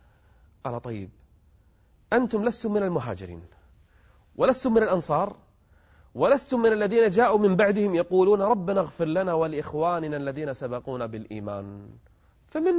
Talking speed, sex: 115 wpm, male